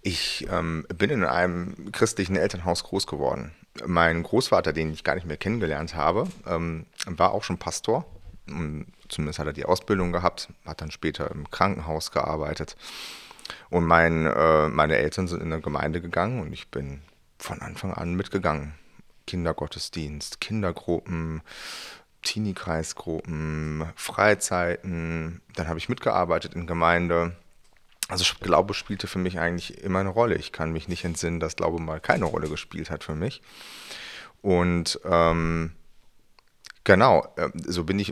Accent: German